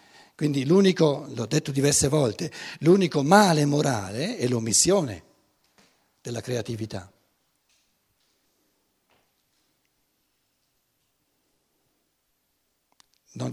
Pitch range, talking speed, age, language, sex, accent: 110-150 Hz, 60 wpm, 60-79, Italian, male, native